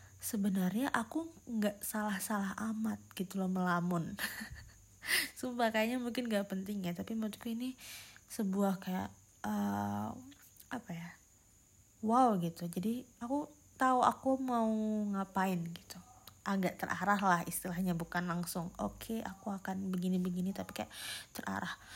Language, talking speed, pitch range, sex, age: Indonesian, 120 wpm, 185-240 Hz, female, 20-39